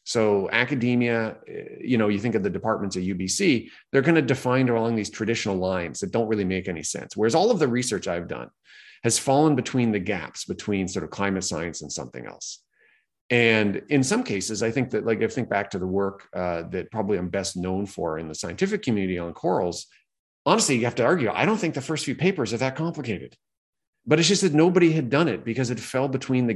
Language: English